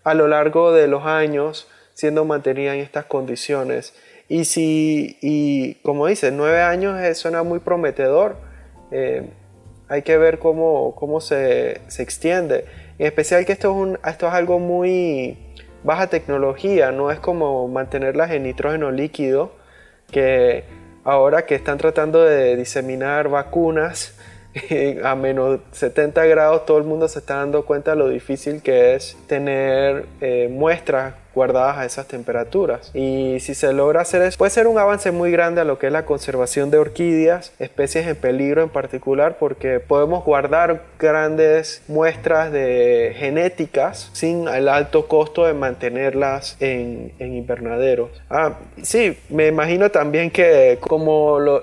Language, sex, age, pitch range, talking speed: Spanish, male, 20-39, 135-165 Hz, 150 wpm